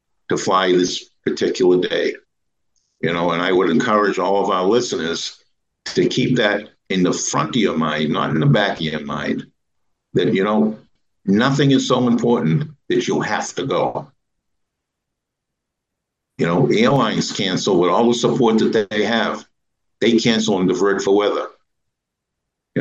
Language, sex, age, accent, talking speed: English, male, 60-79, American, 160 wpm